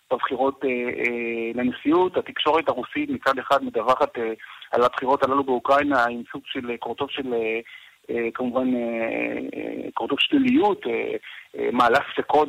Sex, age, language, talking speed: male, 40-59, Hebrew, 100 wpm